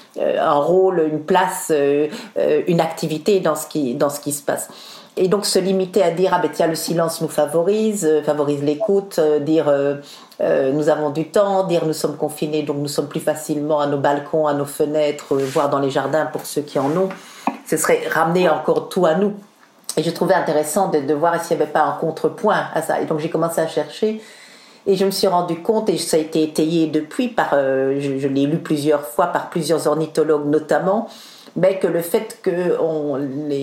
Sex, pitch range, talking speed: female, 150-185 Hz, 210 wpm